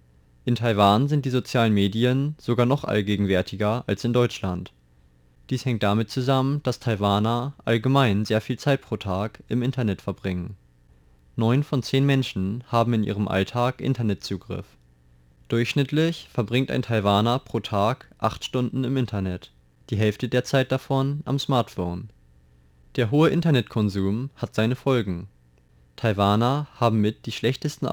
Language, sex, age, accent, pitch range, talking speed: German, male, 20-39, German, 95-125 Hz, 135 wpm